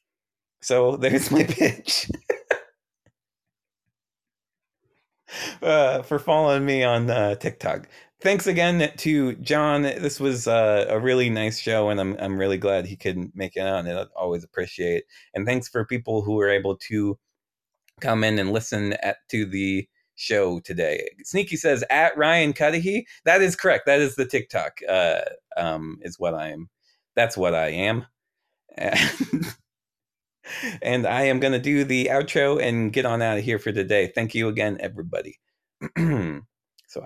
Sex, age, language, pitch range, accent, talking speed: male, 30-49, English, 105-170 Hz, American, 155 wpm